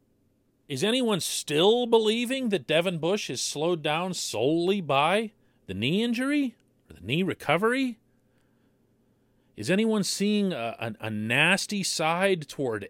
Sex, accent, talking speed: male, American, 130 wpm